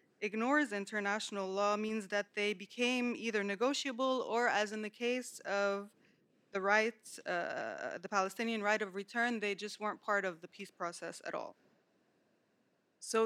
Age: 20-39